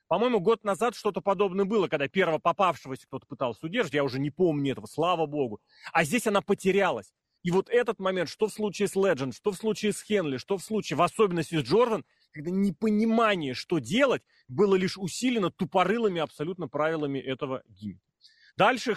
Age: 30-49